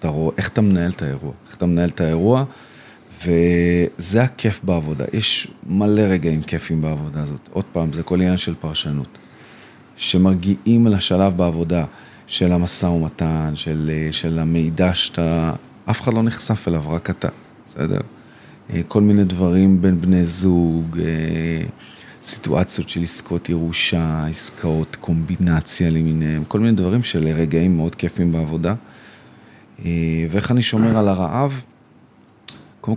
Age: 40-59